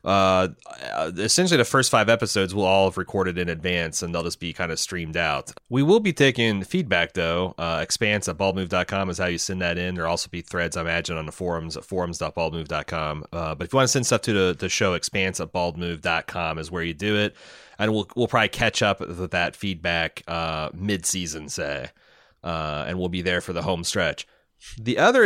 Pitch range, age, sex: 85-105 Hz, 30-49, male